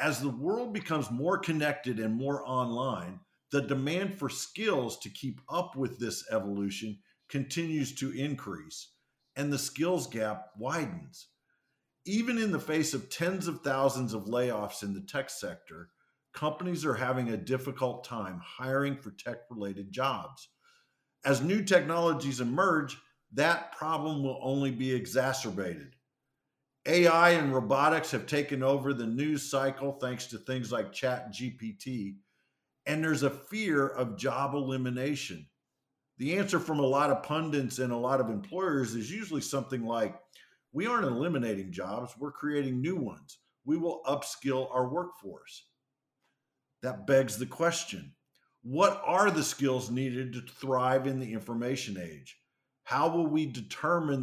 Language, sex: English, male